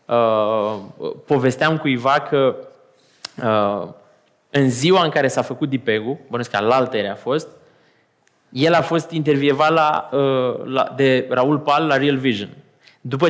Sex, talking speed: male, 140 wpm